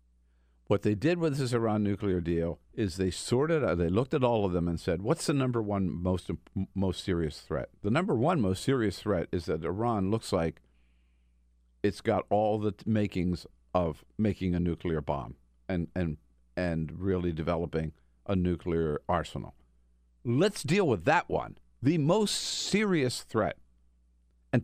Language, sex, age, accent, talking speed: English, male, 50-69, American, 165 wpm